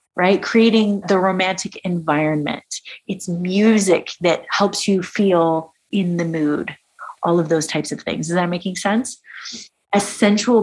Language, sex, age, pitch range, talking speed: English, female, 30-49, 175-220 Hz, 145 wpm